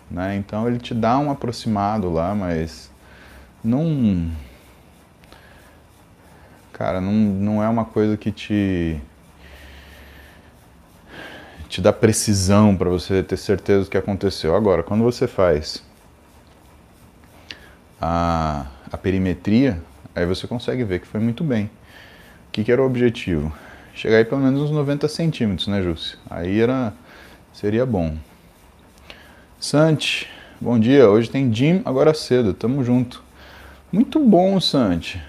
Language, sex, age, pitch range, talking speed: Portuguese, male, 20-39, 85-130 Hz, 130 wpm